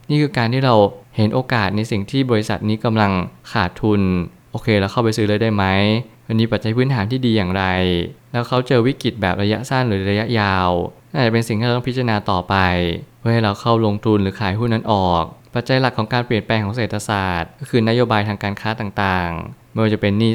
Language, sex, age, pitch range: Thai, male, 20-39, 100-120 Hz